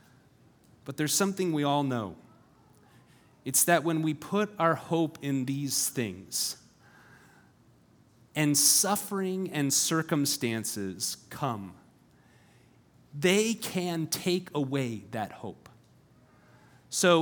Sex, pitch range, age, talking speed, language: male, 130-165 Hz, 30-49, 100 wpm, English